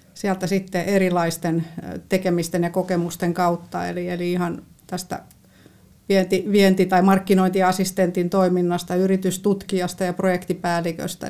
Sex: female